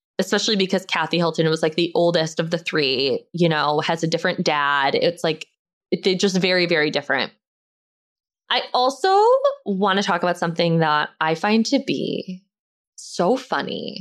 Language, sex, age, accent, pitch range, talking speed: English, female, 20-39, American, 160-215 Hz, 165 wpm